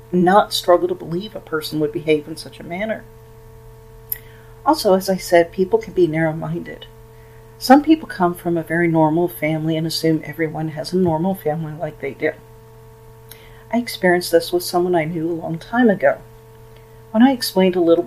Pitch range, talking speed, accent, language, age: 115-175 Hz, 180 wpm, American, English, 40-59